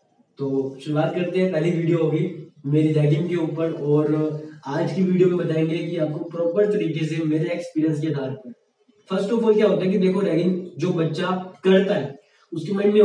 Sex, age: male, 20-39